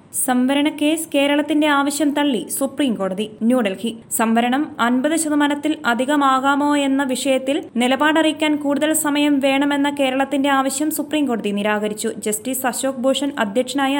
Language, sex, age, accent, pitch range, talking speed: Malayalam, female, 20-39, native, 245-285 Hz, 100 wpm